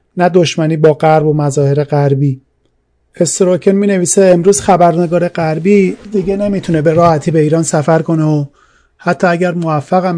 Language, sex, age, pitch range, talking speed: Persian, male, 30-49, 150-175 Hz, 155 wpm